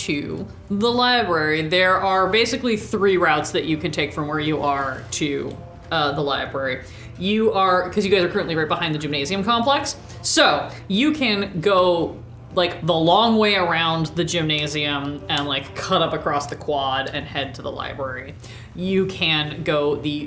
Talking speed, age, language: 175 wpm, 20-39, English